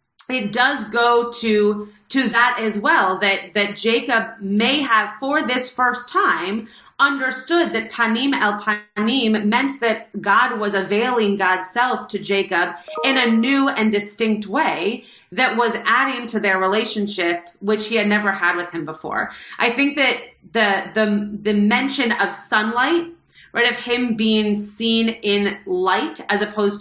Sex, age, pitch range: female, 30-49, 195-240 Hz